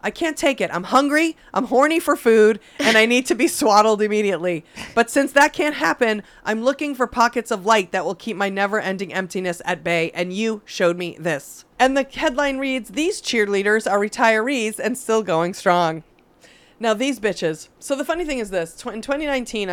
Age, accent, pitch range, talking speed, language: 30-49, American, 180-245 Hz, 200 wpm, English